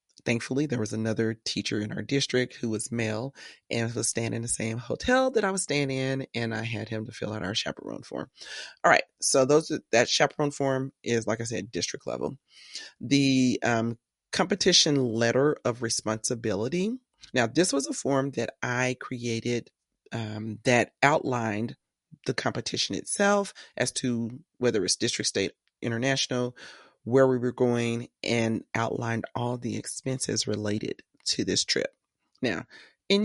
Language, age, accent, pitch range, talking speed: English, 30-49, American, 115-140 Hz, 160 wpm